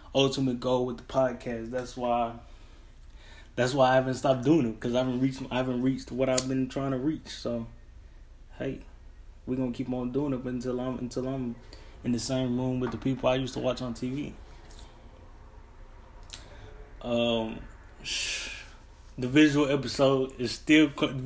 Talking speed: 150 wpm